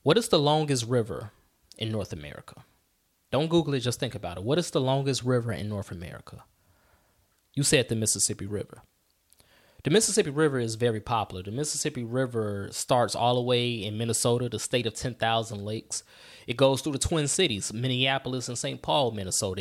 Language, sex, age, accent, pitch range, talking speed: English, male, 20-39, American, 110-135 Hz, 180 wpm